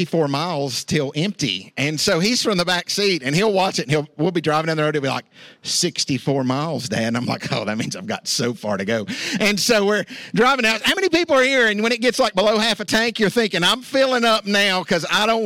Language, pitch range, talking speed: English, 150-200 Hz, 270 wpm